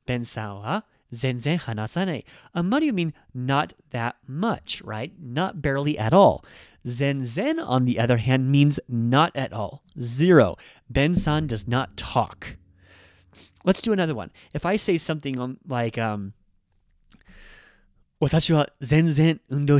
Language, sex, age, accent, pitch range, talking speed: English, male, 30-49, American, 125-175 Hz, 125 wpm